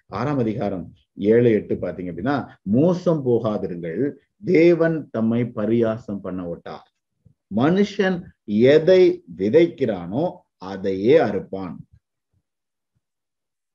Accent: native